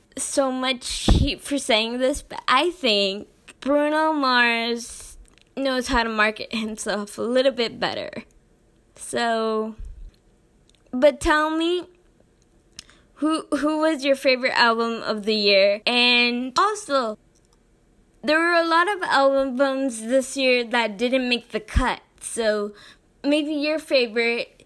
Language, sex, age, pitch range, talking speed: English, female, 20-39, 225-275 Hz, 130 wpm